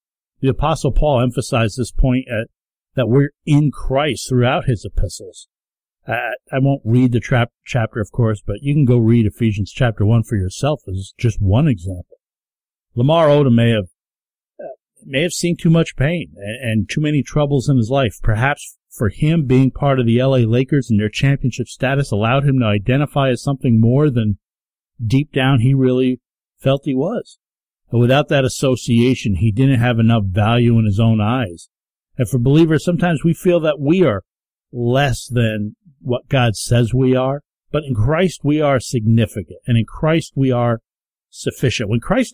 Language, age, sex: English, 50-69, male